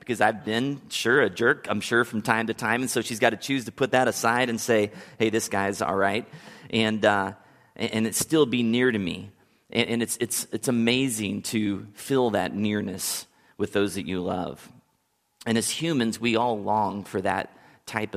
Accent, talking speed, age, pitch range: American, 200 wpm, 30-49, 100-125 Hz